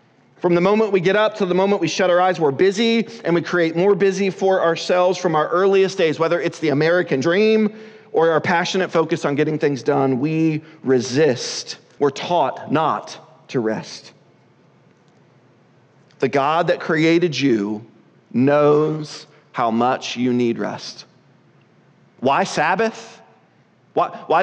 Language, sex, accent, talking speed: English, male, American, 150 wpm